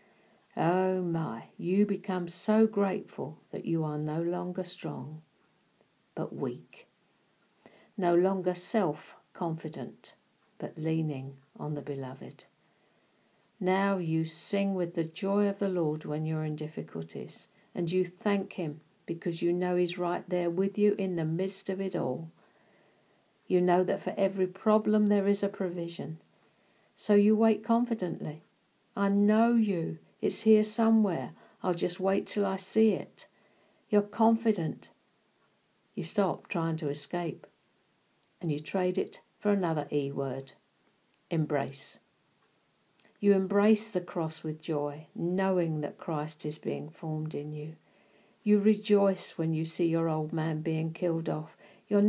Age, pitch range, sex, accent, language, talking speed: 60-79, 160-200 Hz, female, British, English, 140 wpm